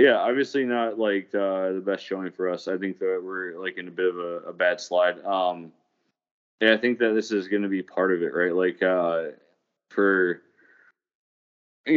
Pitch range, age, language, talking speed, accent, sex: 85-100 Hz, 20-39, English, 200 wpm, American, male